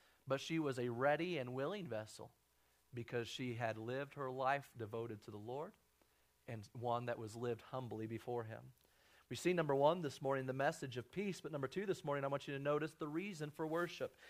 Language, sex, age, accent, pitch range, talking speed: English, male, 40-59, American, 120-155 Hz, 210 wpm